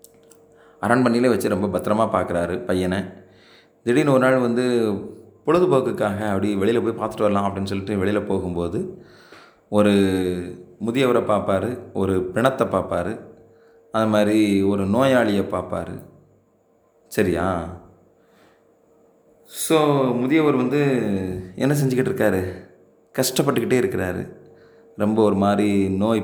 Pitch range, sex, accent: 95-125 Hz, male, native